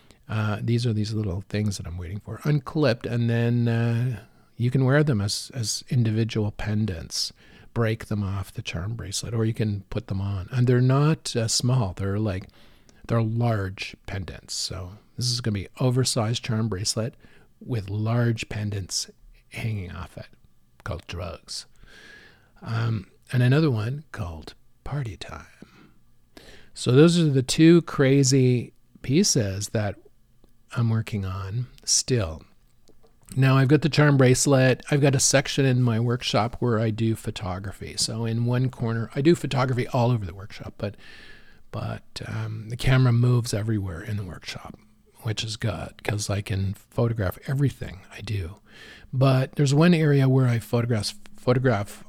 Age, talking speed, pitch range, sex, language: 50-69, 155 wpm, 105-130 Hz, male, English